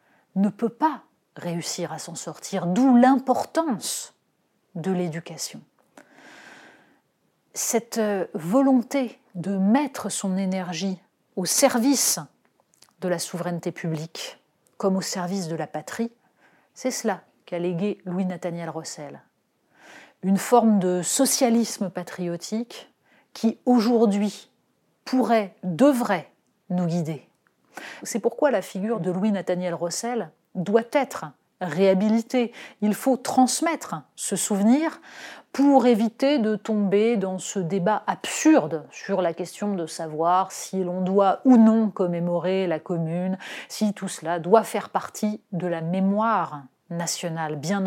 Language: French